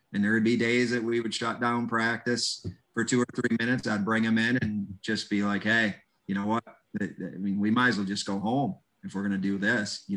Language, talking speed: English, 260 wpm